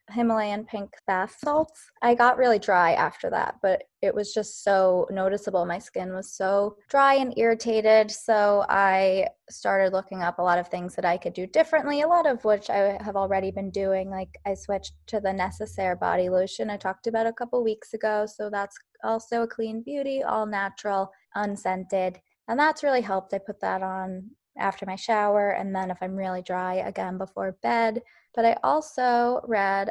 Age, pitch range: 20-39, 190-225 Hz